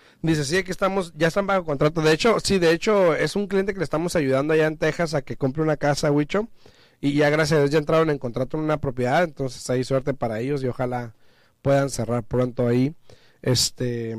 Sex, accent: male, Mexican